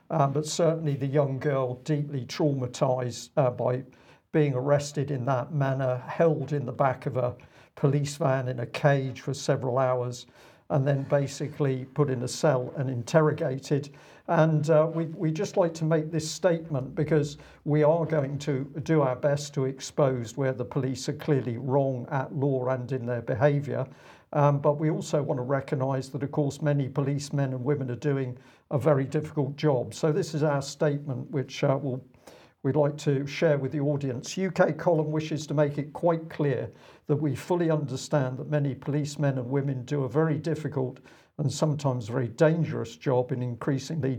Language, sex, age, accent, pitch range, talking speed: English, male, 50-69, British, 130-150 Hz, 180 wpm